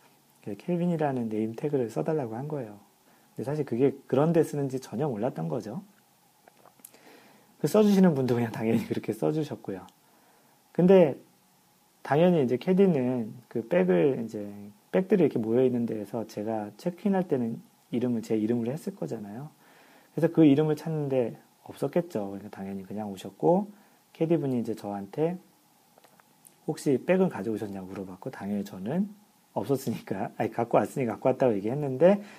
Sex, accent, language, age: male, native, Korean, 40-59